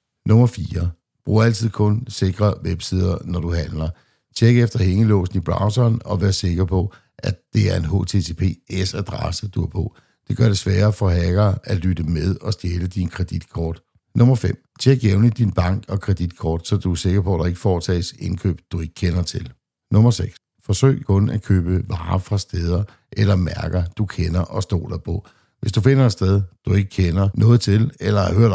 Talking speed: 185 wpm